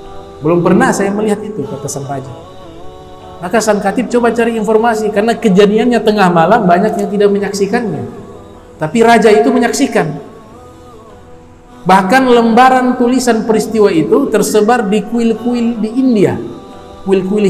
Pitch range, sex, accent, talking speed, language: 165-220 Hz, male, native, 125 wpm, Indonesian